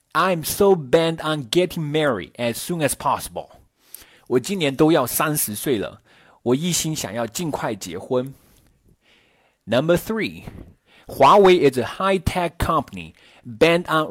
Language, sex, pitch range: Chinese, male, 130-170 Hz